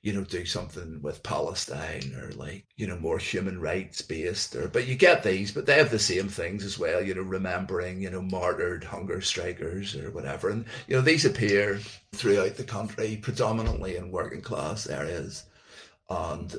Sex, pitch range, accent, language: male, 95-110 Hz, British, English